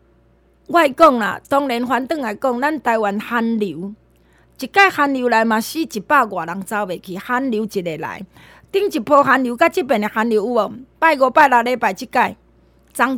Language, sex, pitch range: Chinese, female, 235-360 Hz